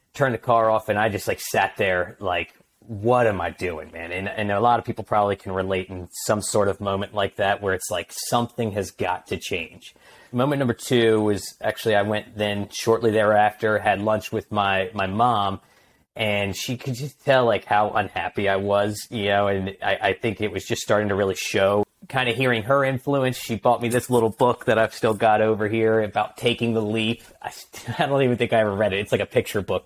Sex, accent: male, American